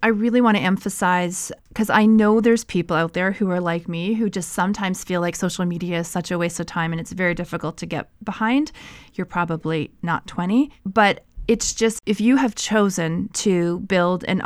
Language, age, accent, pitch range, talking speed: English, 30-49, American, 180-220 Hz, 210 wpm